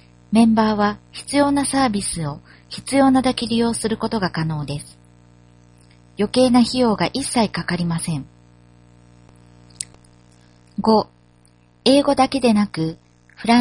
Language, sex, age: Japanese, female, 40-59